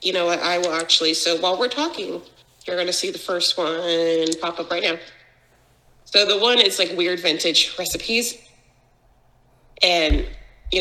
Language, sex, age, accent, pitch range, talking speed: English, female, 30-49, American, 170-220 Hz, 170 wpm